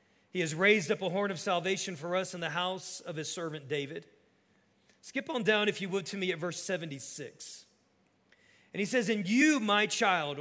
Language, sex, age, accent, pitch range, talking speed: English, male, 40-59, American, 155-200 Hz, 200 wpm